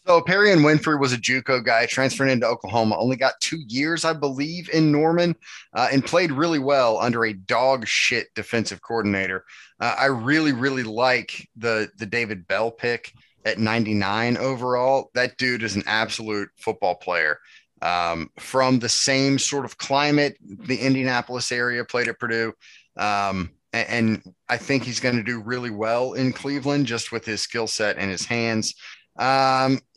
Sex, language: male, English